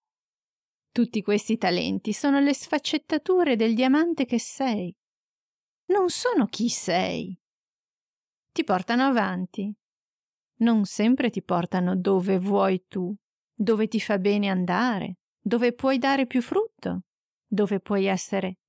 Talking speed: 120 wpm